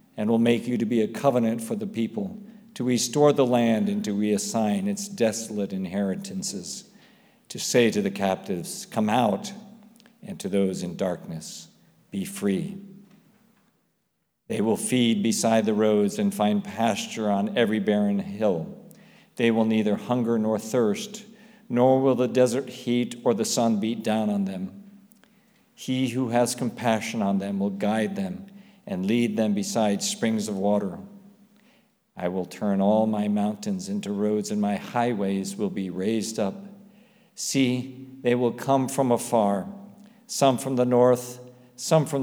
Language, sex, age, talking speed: English, male, 50-69, 155 wpm